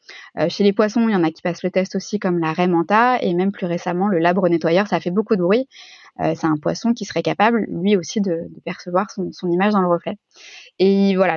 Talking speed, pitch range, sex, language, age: 260 wpm, 180-220 Hz, female, French, 20-39